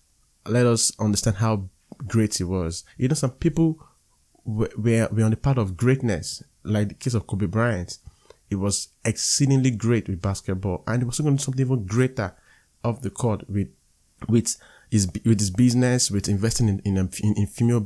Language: English